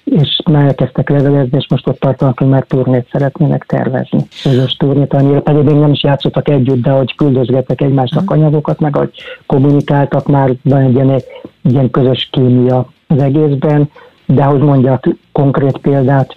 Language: Hungarian